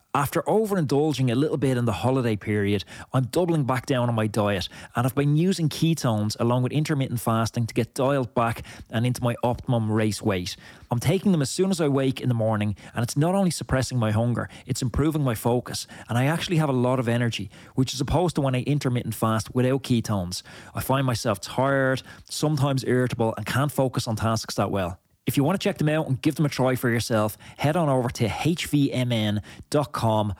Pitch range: 110-140 Hz